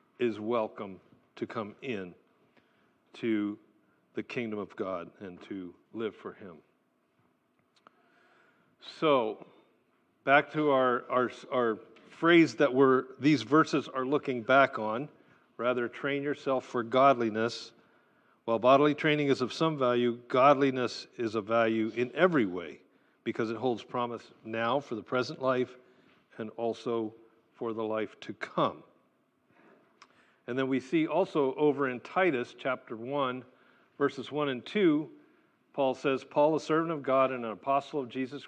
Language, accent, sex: English, American, male